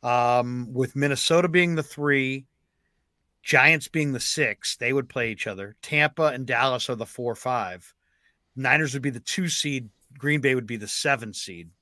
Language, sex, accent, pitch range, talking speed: English, male, American, 110-135 Hz, 180 wpm